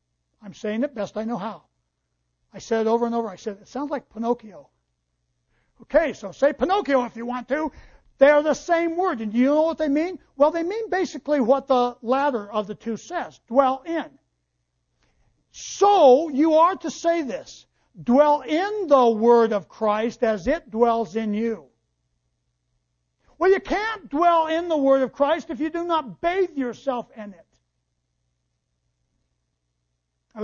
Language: English